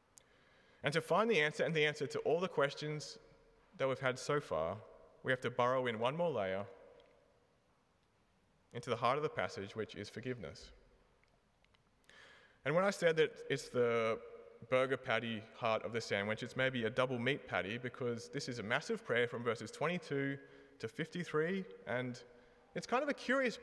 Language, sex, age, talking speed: English, male, 30-49, 180 wpm